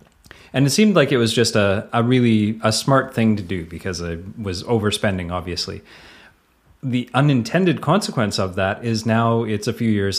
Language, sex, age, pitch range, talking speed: English, male, 30-49, 100-120 Hz, 185 wpm